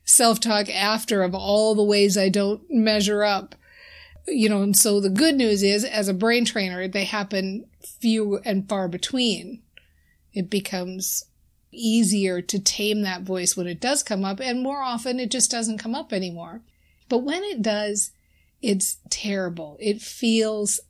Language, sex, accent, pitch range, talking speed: English, female, American, 200-260 Hz, 165 wpm